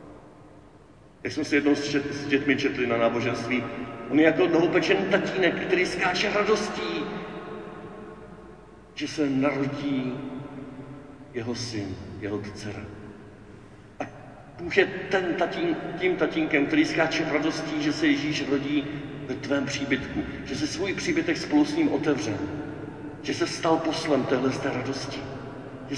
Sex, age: male, 50-69